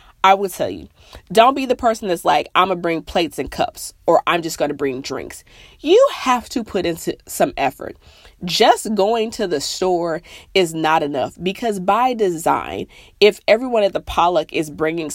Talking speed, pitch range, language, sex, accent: 195 wpm, 165-220 Hz, English, female, American